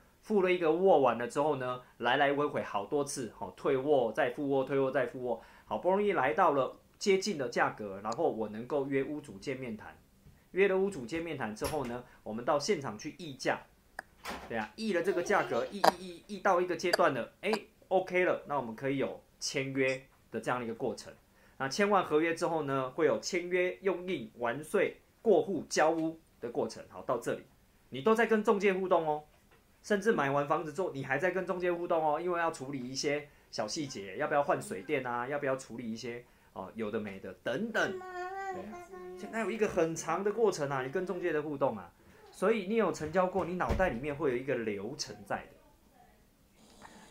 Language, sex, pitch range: Chinese, male, 135-195 Hz